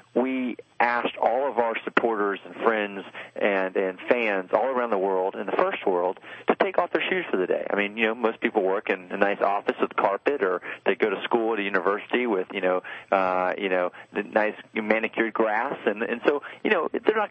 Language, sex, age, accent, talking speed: English, male, 30-49, American, 220 wpm